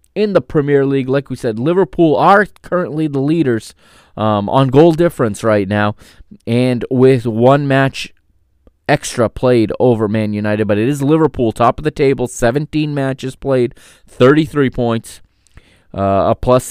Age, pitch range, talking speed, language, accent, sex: 30-49, 105-140 Hz, 155 wpm, English, American, male